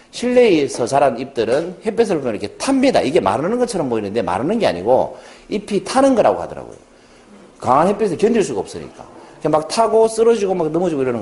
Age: 40-59